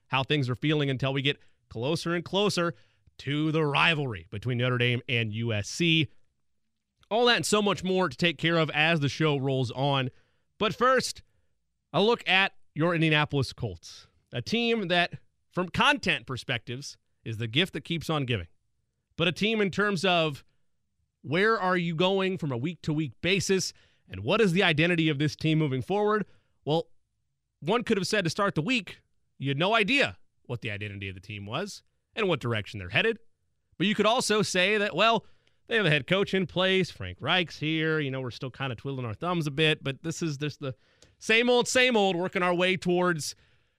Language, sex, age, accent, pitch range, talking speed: English, male, 30-49, American, 125-185 Hz, 195 wpm